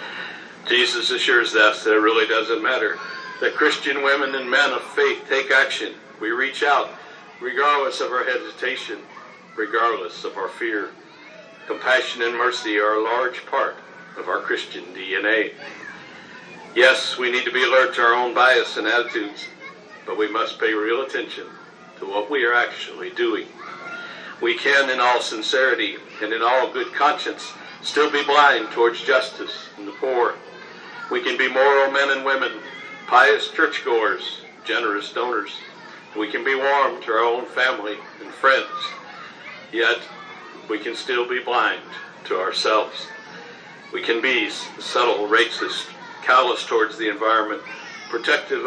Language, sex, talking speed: English, male, 150 wpm